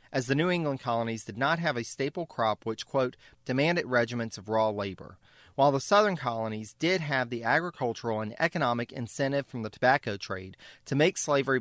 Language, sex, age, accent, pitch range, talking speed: English, male, 40-59, American, 110-150 Hz, 185 wpm